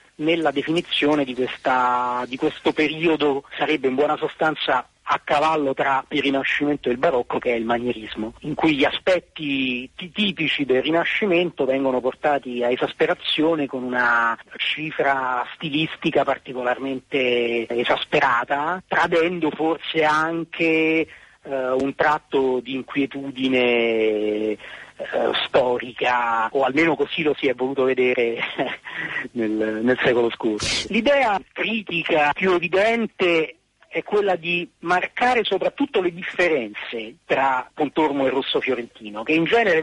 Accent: native